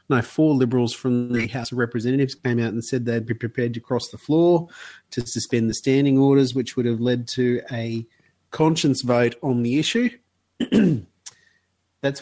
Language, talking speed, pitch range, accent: English, 175 wpm, 120-140 Hz, Australian